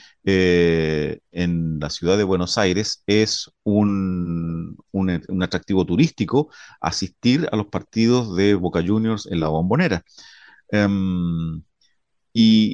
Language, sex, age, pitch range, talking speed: Spanish, male, 40-59, 90-120 Hz, 110 wpm